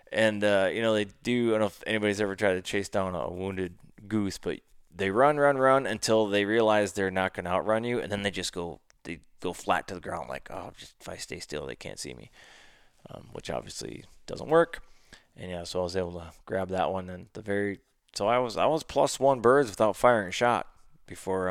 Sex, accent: male, American